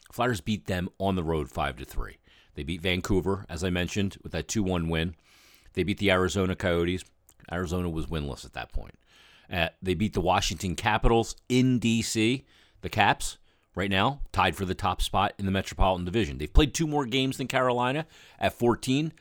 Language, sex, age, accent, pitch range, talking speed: English, male, 40-59, American, 85-100 Hz, 185 wpm